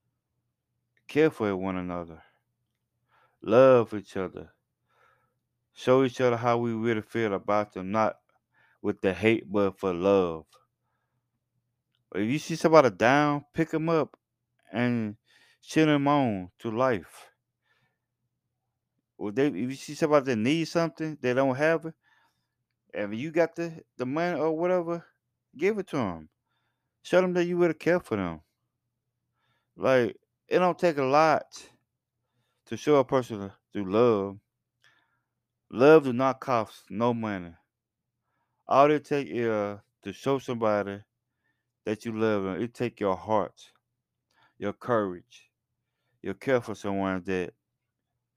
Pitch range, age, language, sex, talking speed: 110-135 Hz, 20-39, English, male, 140 wpm